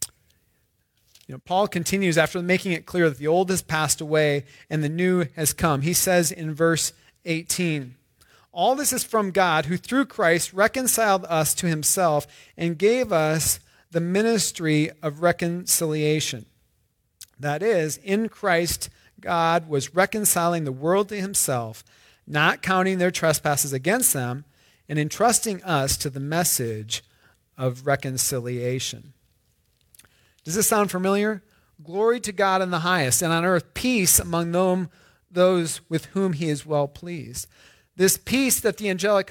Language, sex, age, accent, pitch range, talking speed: English, male, 40-59, American, 150-205 Hz, 145 wpm